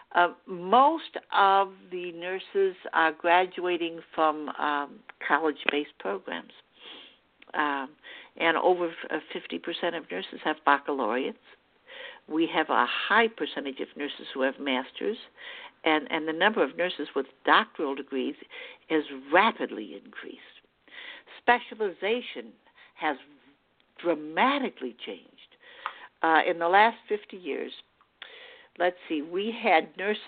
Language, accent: English, American